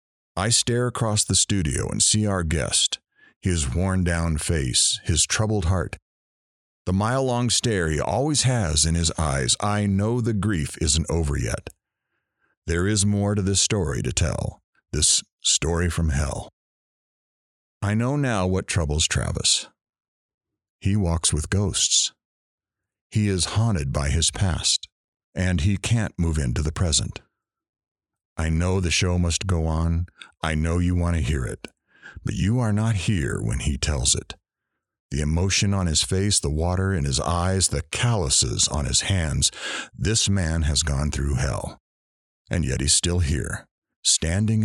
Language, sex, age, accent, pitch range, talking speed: English, male, 50-69, American, 80-105 Hz, 155 wpm